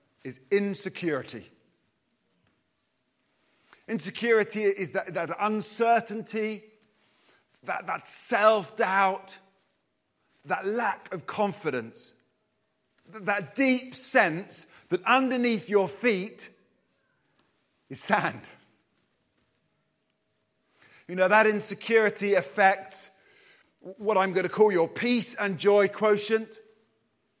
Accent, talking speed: British, 85 wpm